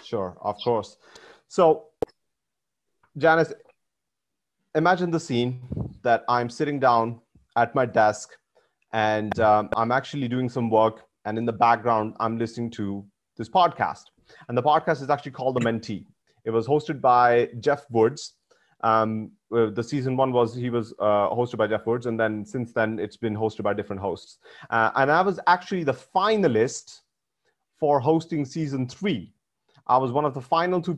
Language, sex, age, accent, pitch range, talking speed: English, male, 30-49, Indian, 115-145 Hz, 165 wpm